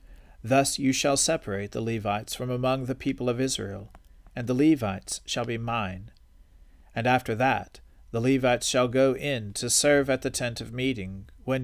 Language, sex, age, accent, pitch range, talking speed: English, male, 40-59, American, 100-130 Hz, 175 wpm